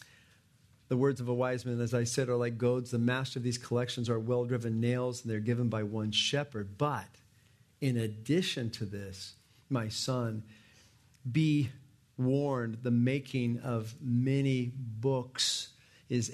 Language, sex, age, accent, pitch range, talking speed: English, male, 50-69, American, 120-165 Hz, 155 wpm